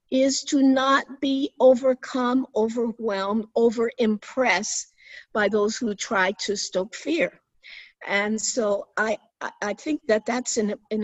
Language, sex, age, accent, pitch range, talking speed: English, female, 50-69, American, 190-255 Hz, 130 wpm